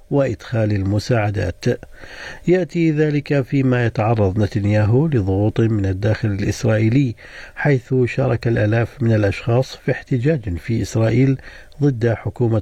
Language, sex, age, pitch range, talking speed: Arabic, male, 50-69, 105-145 Hz, 105 wpm